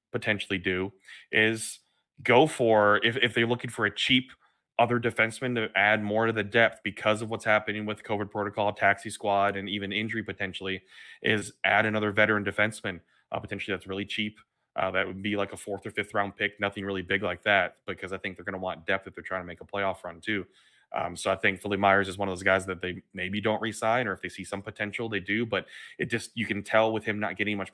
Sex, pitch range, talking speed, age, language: male, 95-110 Hz, 240 wpm, 20-39, English